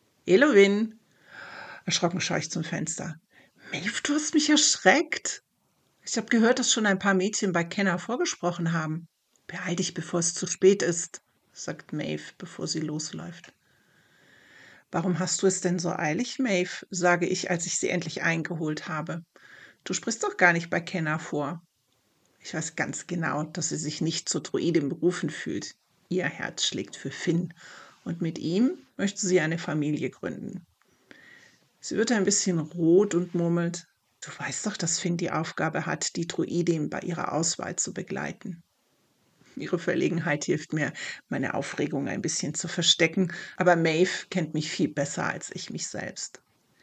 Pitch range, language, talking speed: 170-190 Hz, German, 165 wpm